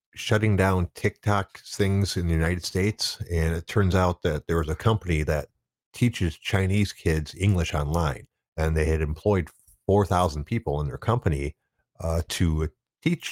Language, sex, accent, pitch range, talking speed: English, male, American, 75-95 Hz, 160 wpm